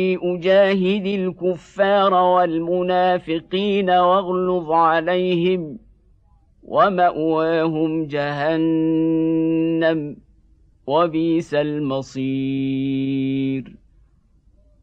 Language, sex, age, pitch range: Arabic, male, 50-69, 160-185 Hz